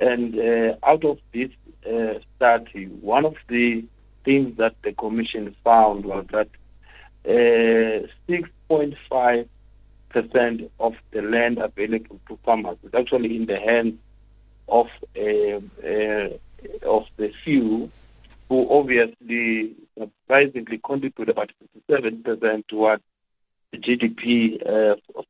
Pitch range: 110-130 Hz